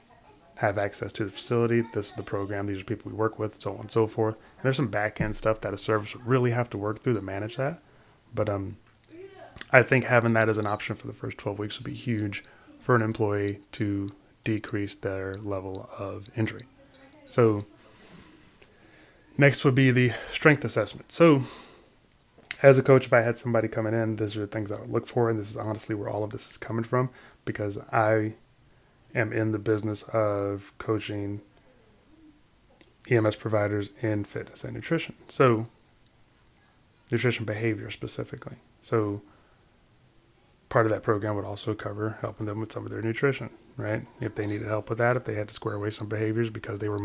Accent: American